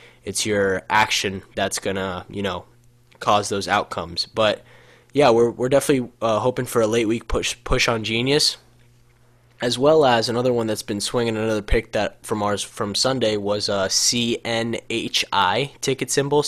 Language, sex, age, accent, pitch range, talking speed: English, male, 10-29, American, 100-115 Hz, 165 wpm